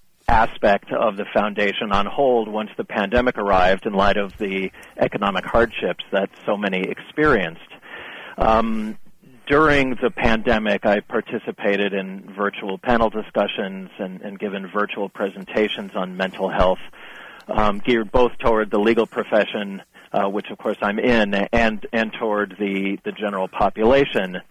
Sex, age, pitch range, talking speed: male, 40-59, 100-115 Hz, 140 wpm